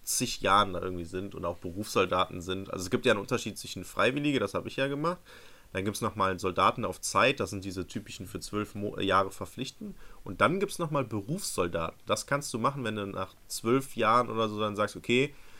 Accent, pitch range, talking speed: German, 100-130 Hz, 225 wpm